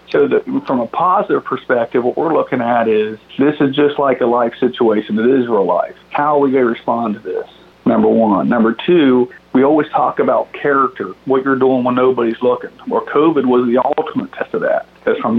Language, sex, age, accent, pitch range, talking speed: English, male, 50-69, American, 115-135 Hz, 220 wpm